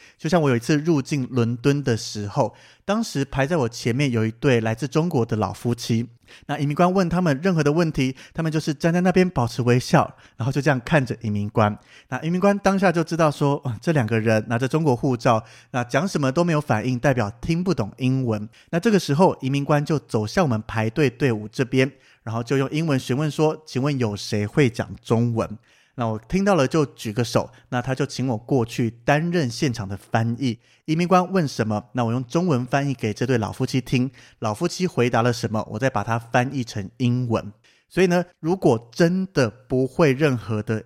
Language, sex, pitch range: Chinese, male, 115-155 Hz